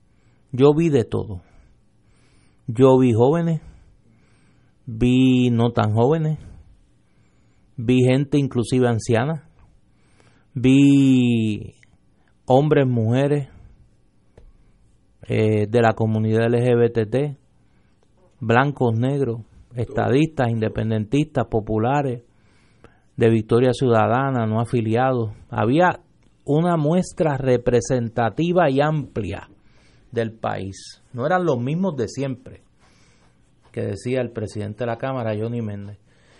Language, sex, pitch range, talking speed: Spanish, male, 115-150 Hz, 90 wpm